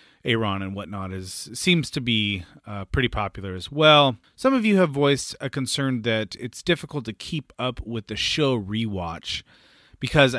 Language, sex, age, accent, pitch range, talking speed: English, male, 30-49, American, 105-145 Hz, 175 wpm